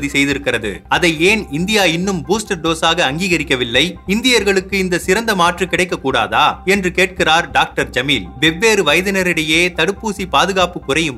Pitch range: 165-195 Hz